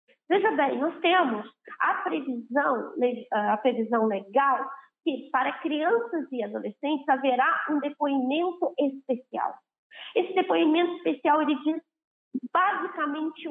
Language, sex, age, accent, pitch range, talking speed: Portuguese, female, 20-39, Brazilian, 245-345 Hz, 100 wpm